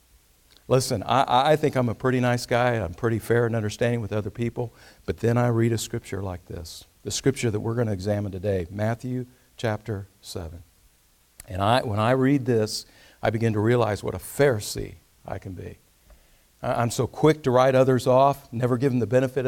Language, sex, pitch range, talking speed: English, male, 110-180 Hz, 195 wpm